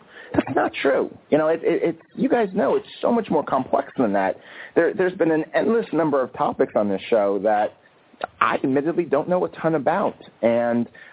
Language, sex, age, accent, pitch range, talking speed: English, male, 30-49, American, 105-150 Hz, 205 wpm